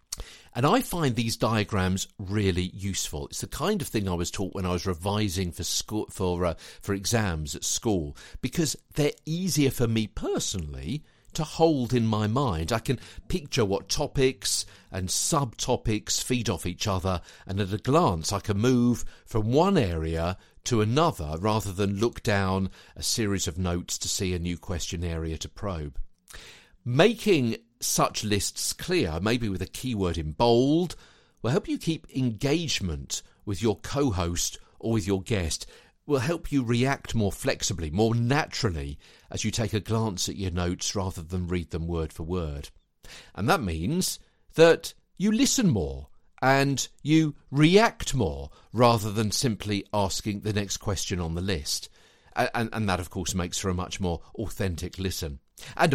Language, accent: English, British